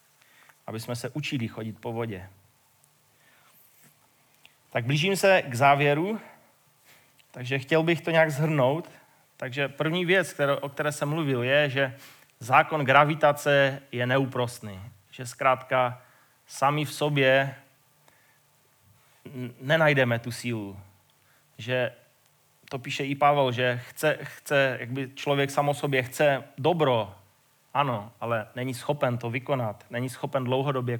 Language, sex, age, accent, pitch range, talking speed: Czech, male, 30-49, native, 125-145 Hz, 120 wpm